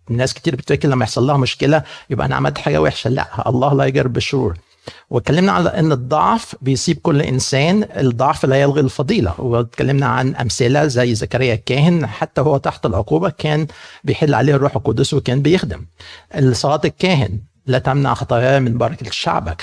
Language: Arabic